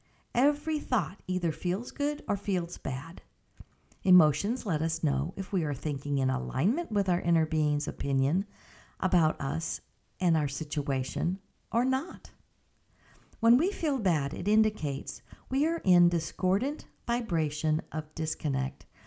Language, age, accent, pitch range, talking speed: English, 50-69, American, 155-240 Hz, 135 wpm